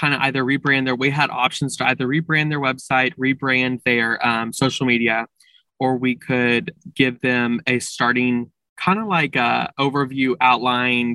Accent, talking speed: American, 160 wpm